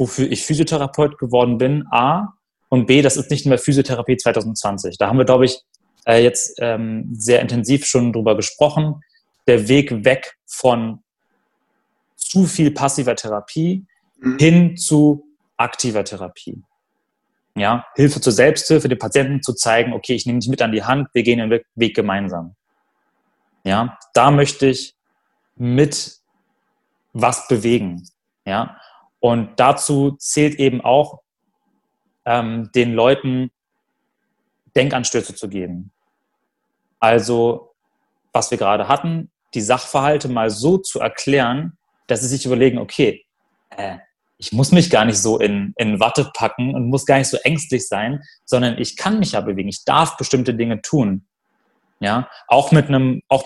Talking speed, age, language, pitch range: 140 wpm, 30-49, German, 115-145 Hz